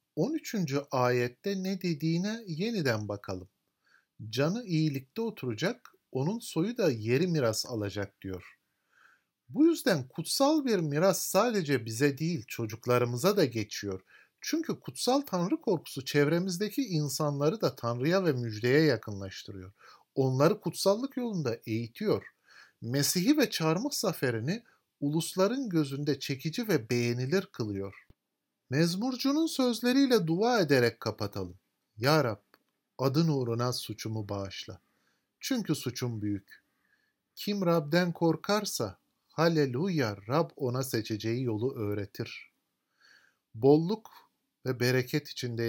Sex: male